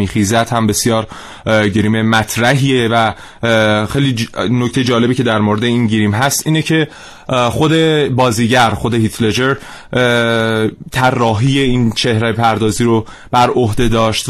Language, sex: Persian, male